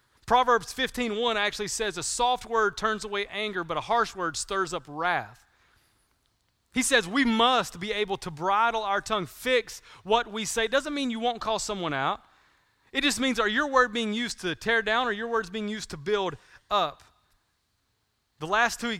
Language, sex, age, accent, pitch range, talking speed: English, male, 30-49, American, 170-230 Hz, 200 wpm